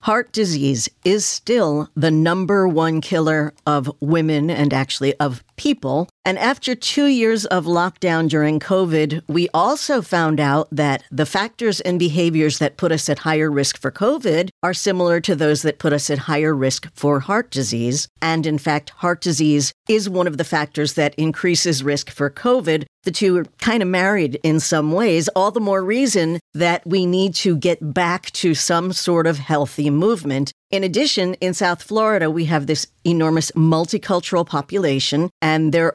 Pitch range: 150-195 Hz